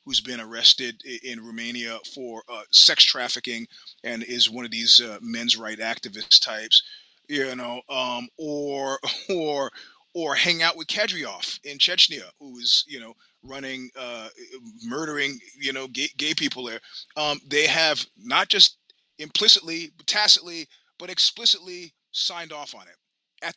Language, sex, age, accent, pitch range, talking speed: English, male, 30-49, American, 125-160 Hz, 150 wpm